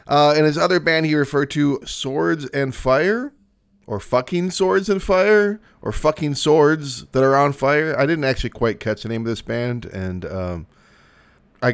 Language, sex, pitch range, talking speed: English, male, 100-135 Hz, 185 wpm